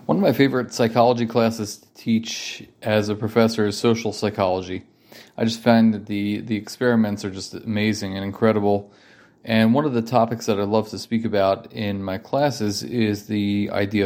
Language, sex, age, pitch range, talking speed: English, male, 30-49, 105-115 Hz, 185 wpm